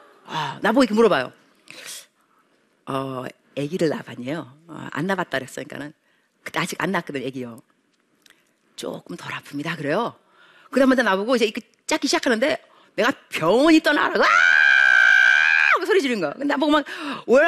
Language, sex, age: Korean, female, 40-59